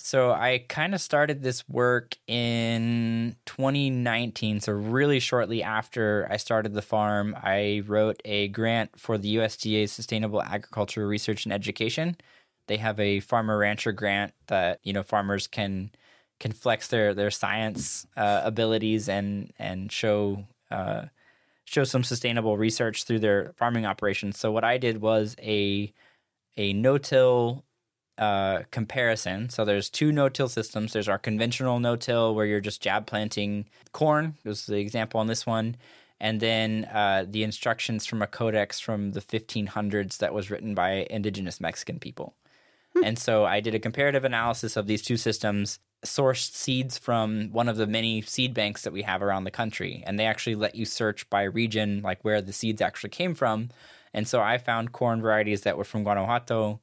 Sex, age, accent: male, 10-29, American